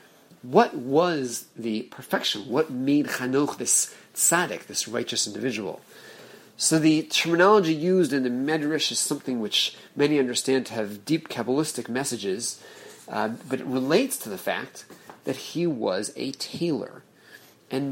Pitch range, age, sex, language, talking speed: 125-175 Hz, 40-59, male, English, 140 wpm